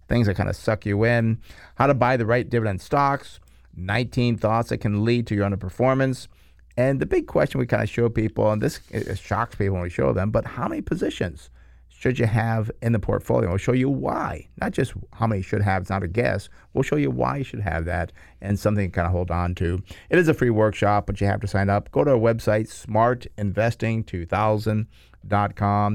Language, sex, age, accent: English, male, 50-69, American